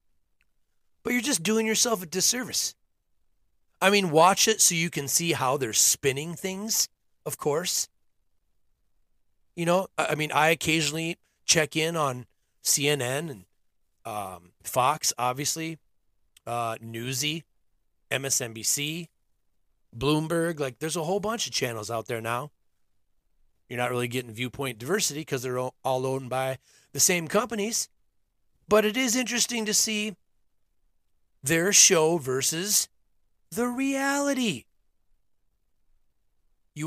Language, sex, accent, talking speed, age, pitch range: English, male, American, 120 wpm, 30-49, 115-185 Hz